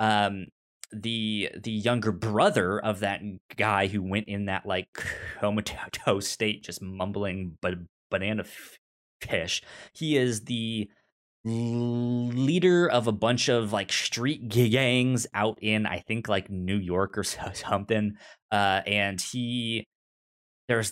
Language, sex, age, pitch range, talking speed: English, male, 20-39, 100-120 Hz, 125 wpm